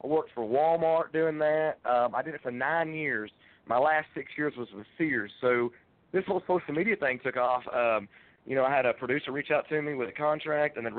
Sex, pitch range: male, 115-145 Hz